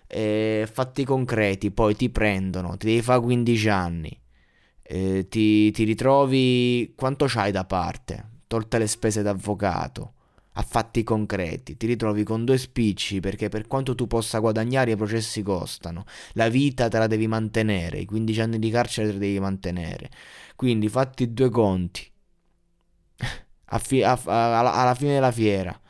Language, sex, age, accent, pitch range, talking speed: Italian, male, 20-39, native, 105-125 Hz, 145 wpm